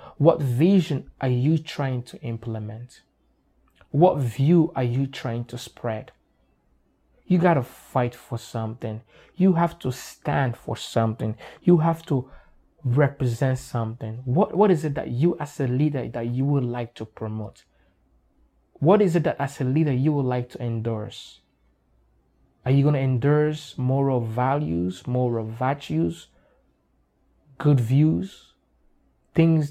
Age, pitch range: 20-39, 115-150 Hz